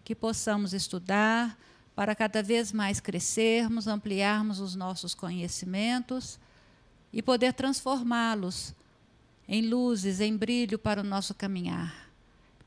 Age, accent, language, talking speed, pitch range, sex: 50-69, Brazilian, Portuguese, 115 wpm, 195-230 Hz, female